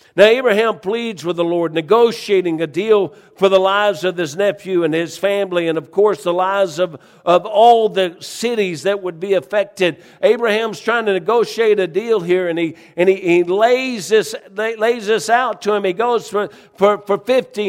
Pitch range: 185-220 Hz